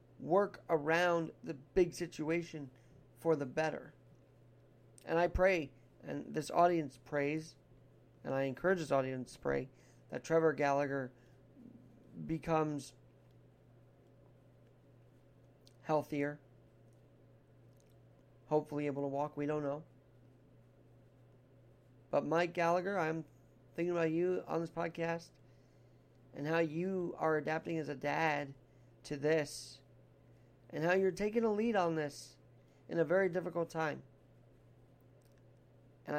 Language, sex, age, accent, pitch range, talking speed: English, male, 40-59, American, 135-170 Hz, 115 wpm